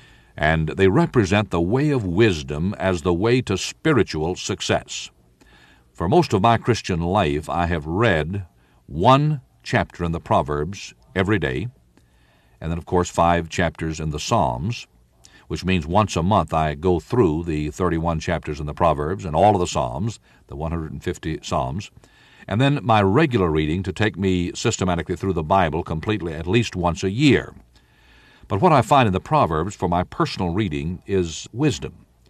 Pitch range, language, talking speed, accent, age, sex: 80-110 Hz, English, 170 wpm, American, 60-79, male